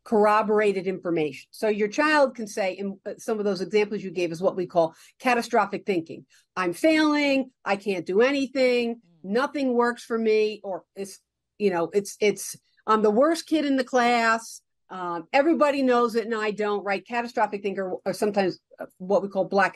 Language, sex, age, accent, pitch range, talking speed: English, female, 50-69, American, 195-250 Hz, 180 wpm